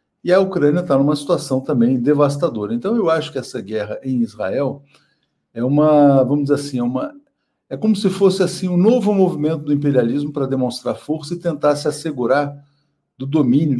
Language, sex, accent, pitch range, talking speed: Portuguese, male, Brazilian, 130-165 Hz, 180 wpm